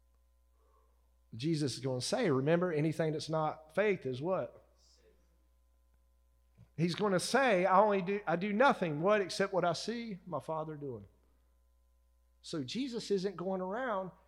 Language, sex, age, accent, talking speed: English, male, 40-59, American, 145 wpm